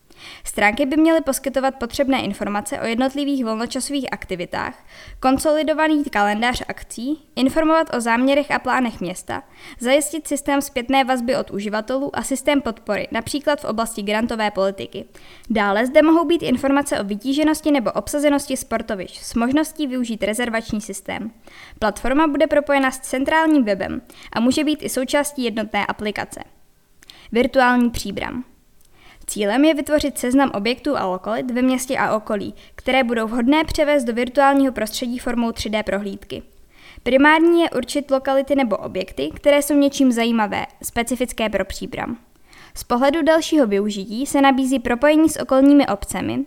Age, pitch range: 20-39, 225-285 Hz